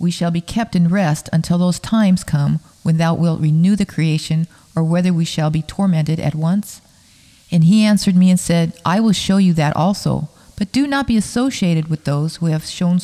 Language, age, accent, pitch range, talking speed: English, 40-59, American, 155-190 Hz, 210 wpm